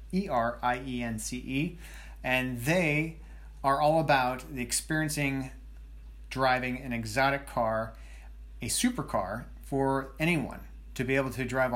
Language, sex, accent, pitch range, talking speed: English, male, American, 120-150 Hz, 105 wpm